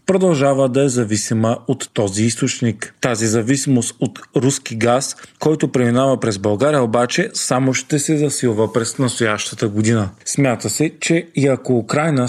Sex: male